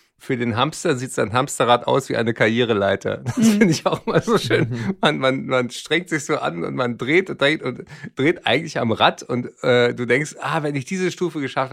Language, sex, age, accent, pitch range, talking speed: German, male, 50-69, German, 115-145 Hz, 225 wpm